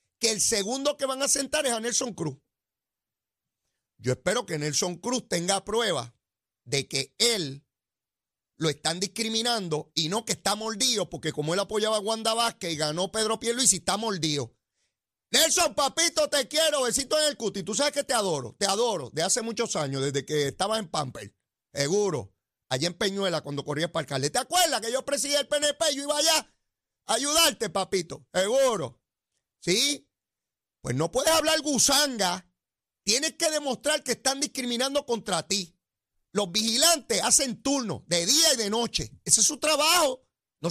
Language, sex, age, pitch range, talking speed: Spanish, male, 30-49, 165-275 Hz, 170 wpm